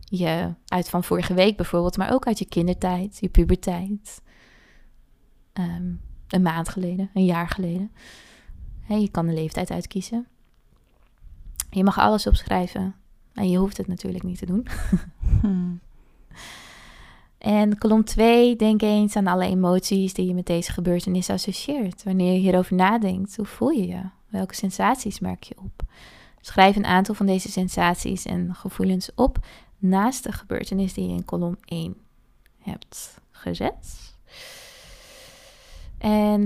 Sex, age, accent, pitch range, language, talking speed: female, 20-39, Dutch, 180-215 Hz, Dutch, 140 wpm